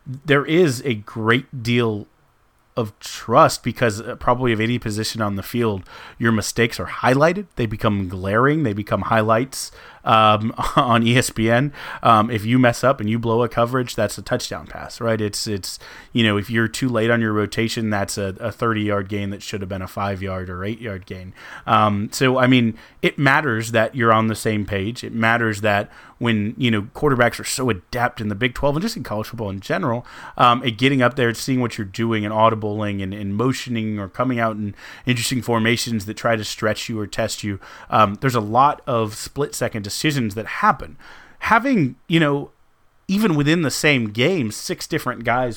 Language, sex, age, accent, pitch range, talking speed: English, male, 30-49, American, 105-125 Hz, 195 wpm